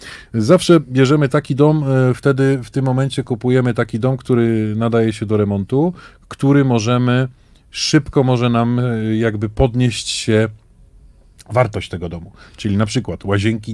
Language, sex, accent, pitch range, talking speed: Polish, male, native, 105-125 Hz, 135 wpm